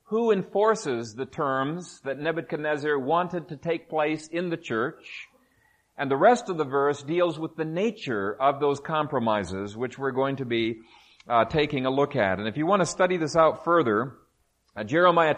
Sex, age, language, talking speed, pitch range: male, 40-59, English, 185 wpm, 135-175 Hz